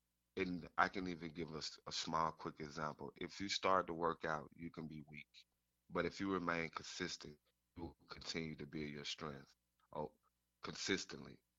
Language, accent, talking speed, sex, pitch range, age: English, American, 180 wpm, male, 75-90 Hz, 30-49